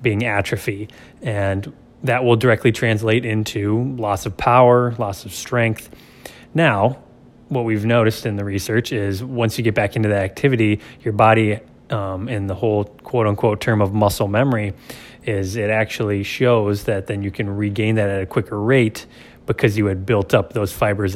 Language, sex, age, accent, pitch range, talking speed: English, male, 20-39, American, 100-120 Hz, 175 wpm